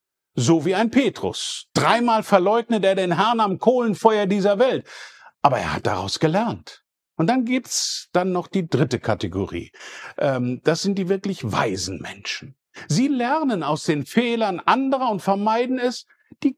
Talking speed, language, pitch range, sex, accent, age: 155 wpm, German, 165-245 Hz, male, German, 50-69